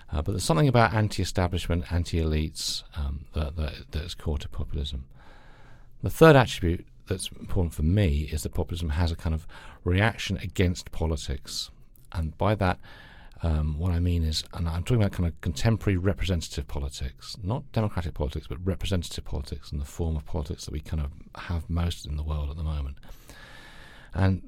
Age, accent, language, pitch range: 40-59, British, English, 80-100 Hz